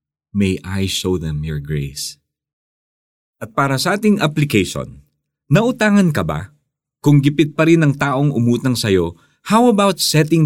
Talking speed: 145 wpm